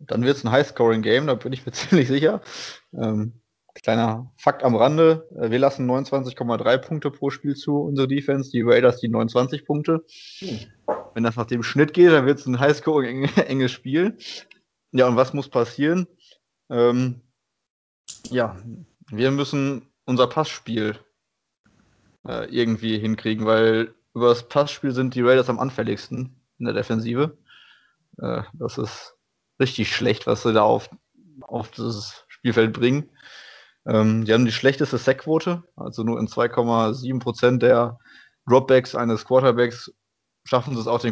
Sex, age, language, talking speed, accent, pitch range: male, 20-39, German, 145 wpm, German, 115-135 Hz